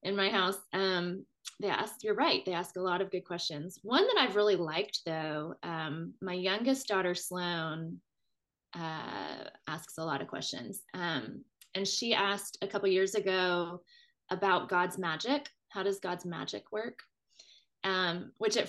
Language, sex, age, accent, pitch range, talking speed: English, female, 20-39, American, 175-200 Hz, 165 wpm